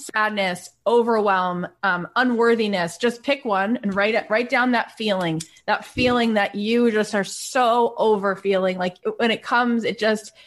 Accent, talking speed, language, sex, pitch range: American, 165 wpm, English, female, 205-250 Hz